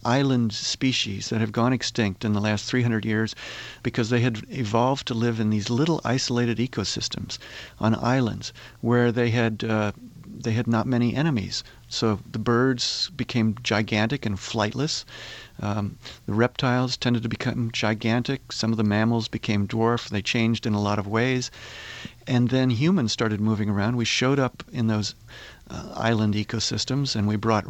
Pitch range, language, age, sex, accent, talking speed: 110-125 Hz, English, 50-69, male, American, 165 wpm